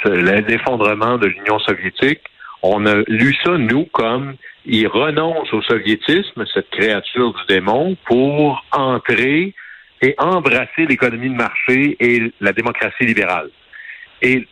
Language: French